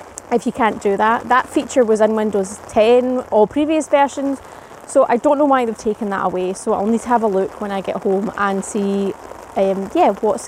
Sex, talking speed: female, 225 wpm